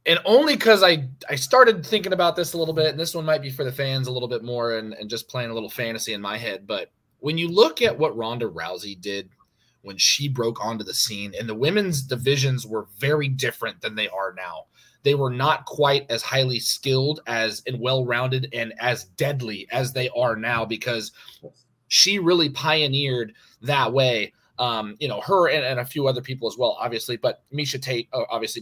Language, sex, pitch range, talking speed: English, male, 120-150 Hz, 210 wpm